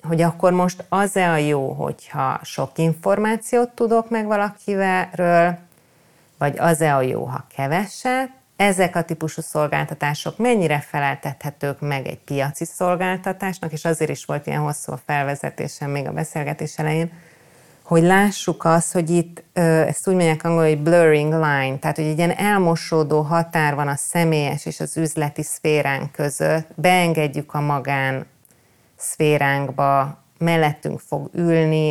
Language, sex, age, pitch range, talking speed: Hungarian, female, 30-49, 145-170 Hz, 135 wpm